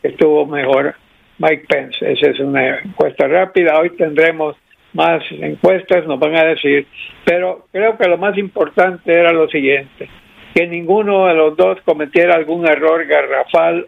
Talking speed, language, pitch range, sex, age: 155 wpm, Spanish, 155-185 Hz, male, 60-79